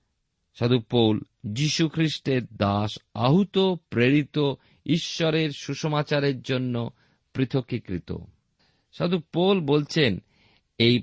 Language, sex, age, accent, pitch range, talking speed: Bengali, male, 50-69, native, 105-155 Hz, 80 wpm